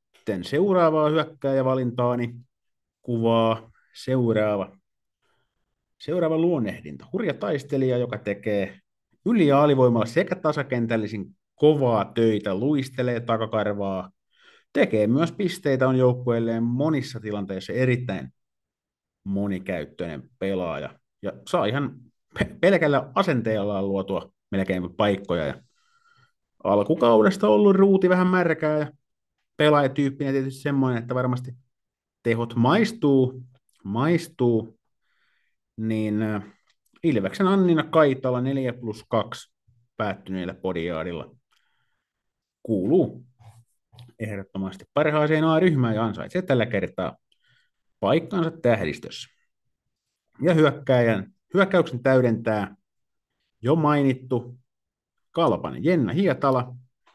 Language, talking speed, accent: Finnish, 85 wpm, native